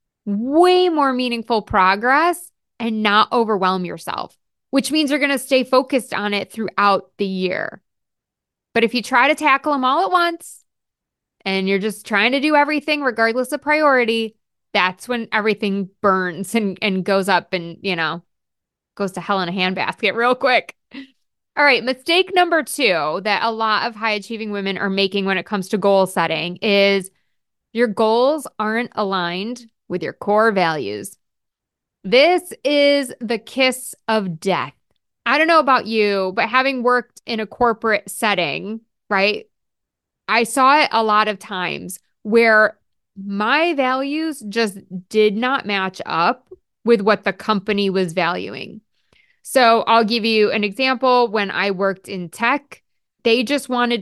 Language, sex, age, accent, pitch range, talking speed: English, female, 20-39, American, 200-255 Hz, 155 wpm